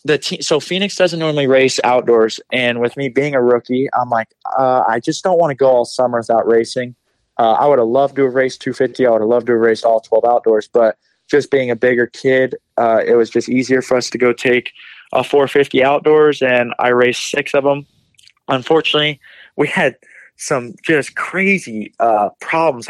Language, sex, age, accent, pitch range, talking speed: English, male, 20-39, American, 120-140 Hz, 210 wpm